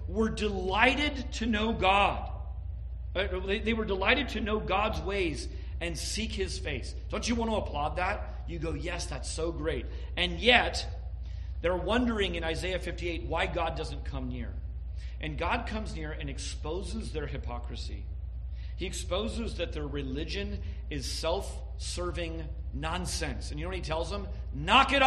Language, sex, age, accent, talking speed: English, male, 40-59, American, 155 wpm